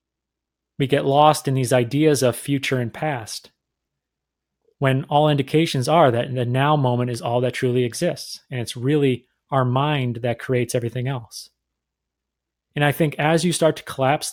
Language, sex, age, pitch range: English, male, 30-49, 120-145 Hz